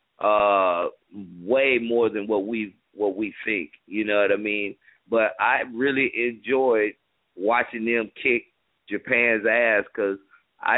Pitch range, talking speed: 110-150 Hz, 140 wpm